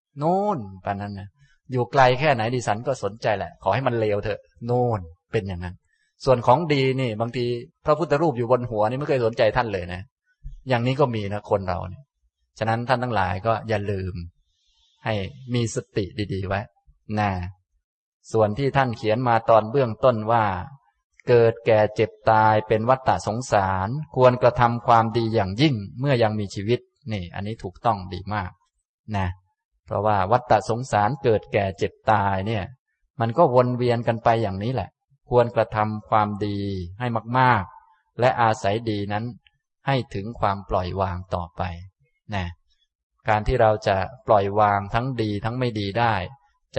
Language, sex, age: Thai, male, 20-39